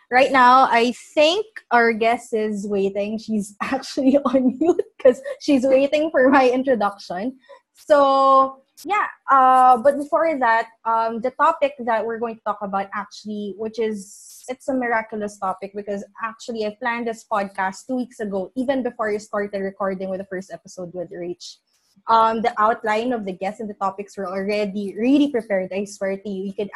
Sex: female